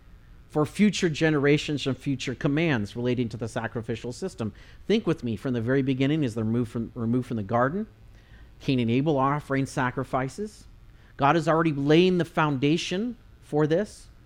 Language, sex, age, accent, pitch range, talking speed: English, male, 40-59, American, 115-165 Hz, 170 wpm